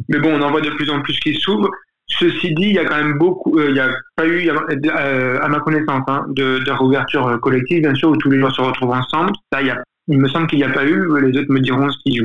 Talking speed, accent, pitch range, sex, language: 300 wpm, French, 130-155 Hz, male, French